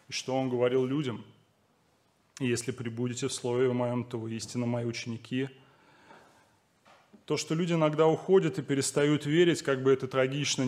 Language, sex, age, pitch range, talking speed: Russian, male, 30-49, 120-140 Hz, 150 wpm